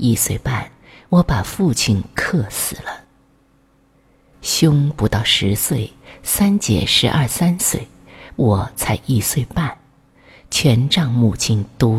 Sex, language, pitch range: female, Chinese, 115-160 Hz